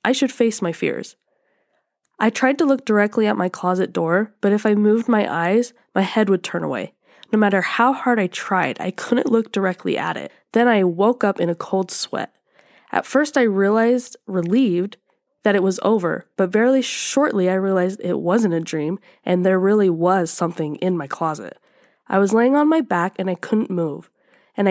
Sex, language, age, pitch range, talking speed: female, English, 10-29, 185-240 Hz, 200 wpm